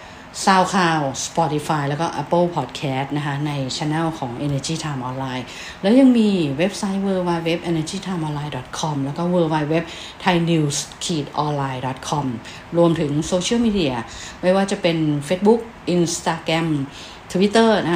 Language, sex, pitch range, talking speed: English, female, 145-175 Hz, 65 wpm